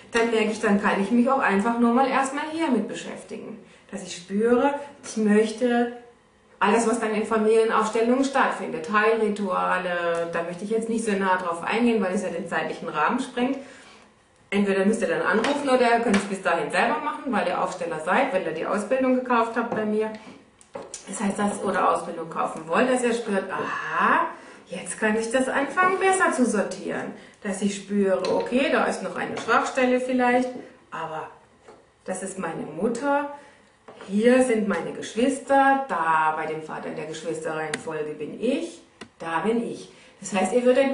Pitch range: 190-255 Hz